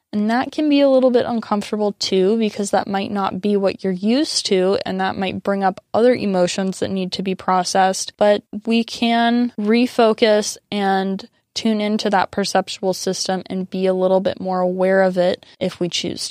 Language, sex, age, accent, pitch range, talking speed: English, female, 10-29, American, 185-205 Hz, 190 wpm